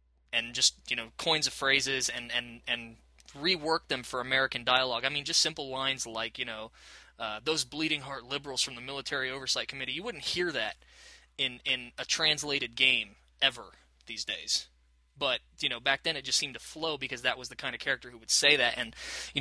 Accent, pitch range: American, 120-145 Hz